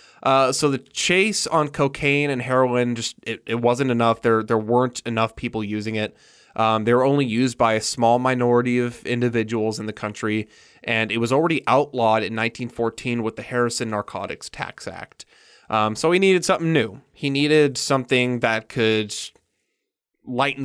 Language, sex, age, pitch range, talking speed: English, male, 20-39, 110-130 Hz, 170 wpm